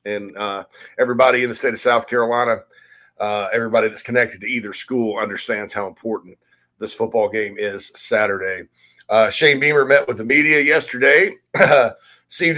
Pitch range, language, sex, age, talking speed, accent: 110-155 Hz, English, male, 40-59, 155 wpm, American